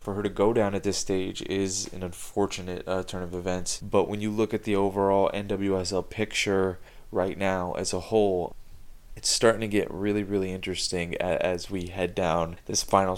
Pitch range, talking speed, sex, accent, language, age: 95-110 Hz, 190 wpm, male, American, English, 20-39